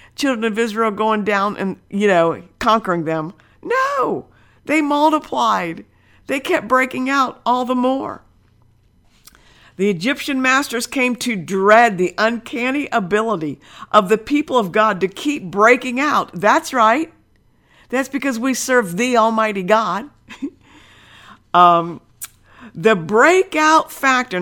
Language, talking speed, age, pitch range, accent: English, 125 wpm, 50-69, 175-270 Hz, American